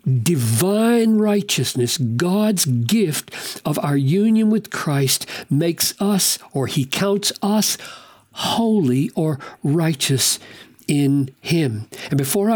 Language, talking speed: English, 105 wpm